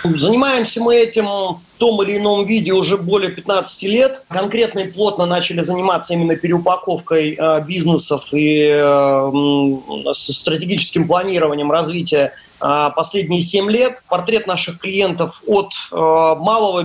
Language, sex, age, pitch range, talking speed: Russian, male, 30-49, 155-200 Hz, 130 wpm